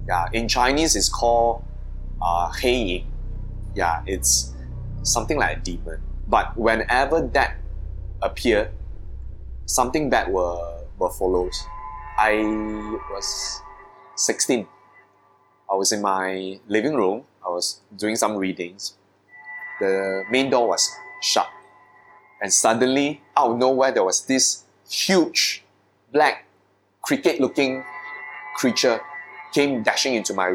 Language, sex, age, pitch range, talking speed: English, male, 20-39, 90-125 Hz, 115 wpm